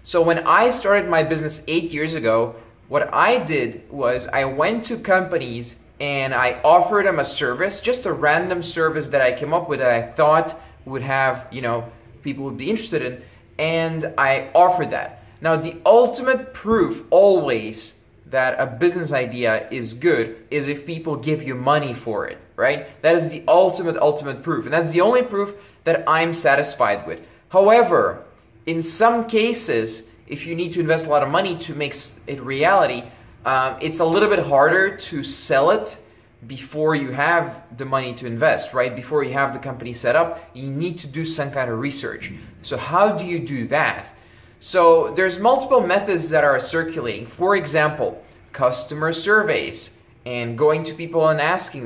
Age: 20-39